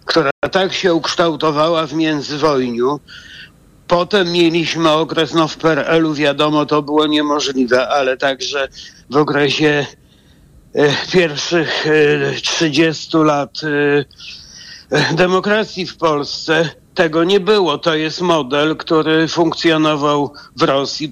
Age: 60-79